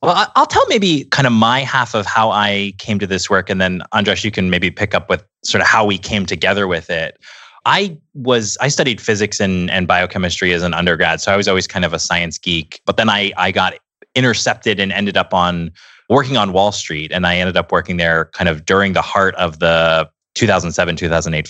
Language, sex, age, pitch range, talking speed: English, male, 20-39, 90-110 Hz, 245 wpm